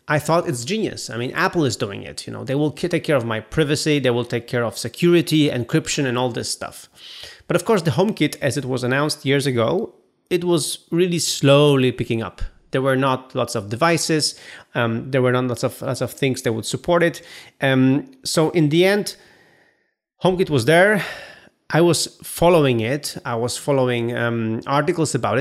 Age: 30-49